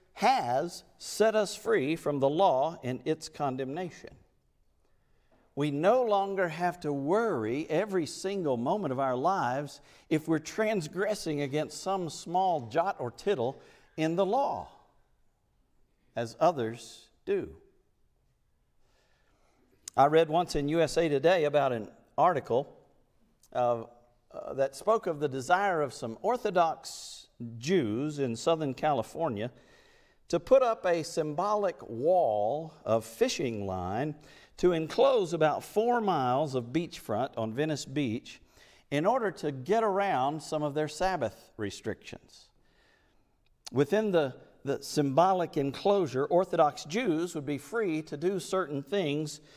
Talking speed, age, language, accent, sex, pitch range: 125 wpm, 50-69, English, American, male, 135-180 Hz